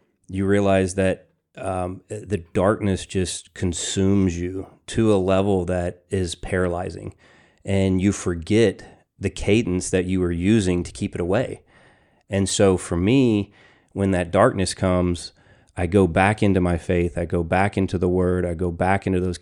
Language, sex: English, male